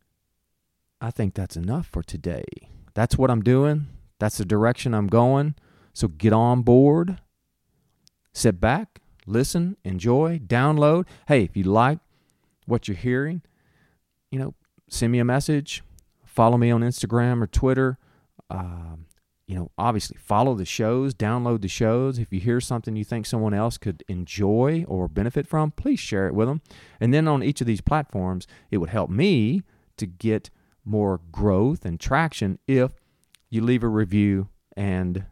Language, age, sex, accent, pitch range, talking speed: English, 40-59, male, American, 95-125 Hz, 160 wpm